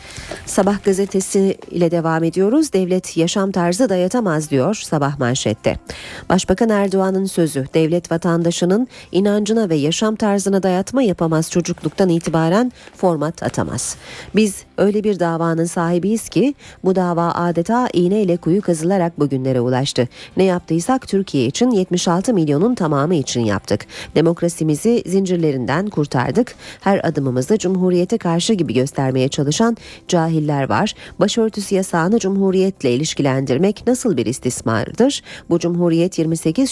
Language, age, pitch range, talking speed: Turkish, 40-59, 155-205 Hz, 120 wpm